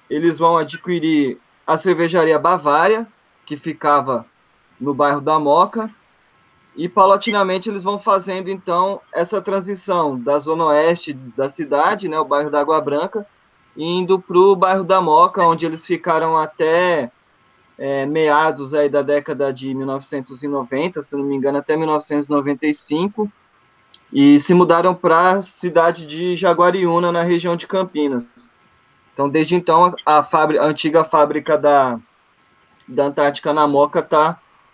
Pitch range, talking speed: 145-180 Hz, 130 wpm